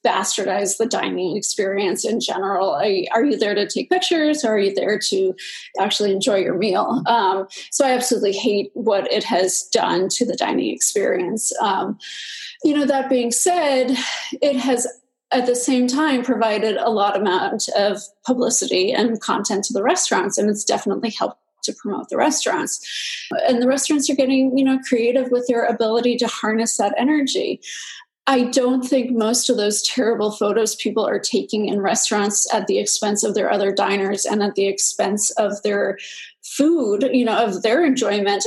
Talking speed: 175 wpm